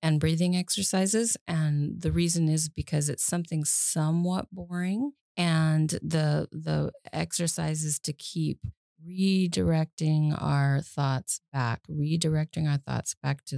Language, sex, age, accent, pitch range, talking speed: English, female, 30-49, American, 145-170 Hz, 120 wpm